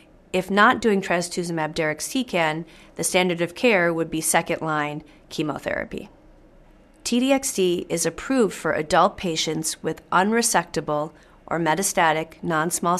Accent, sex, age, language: American, female, 40-59, English